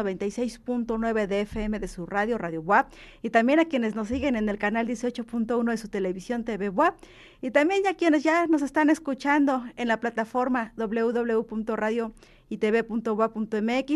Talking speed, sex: 150 wpm, female